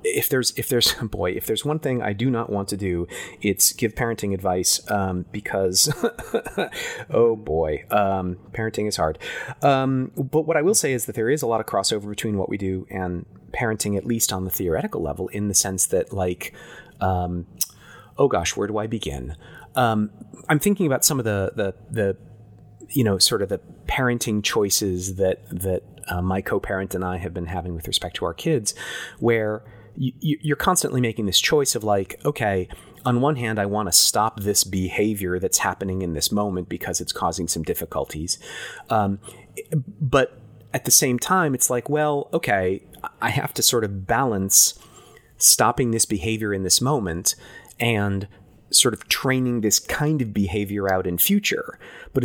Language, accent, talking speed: English, American, 180 wpm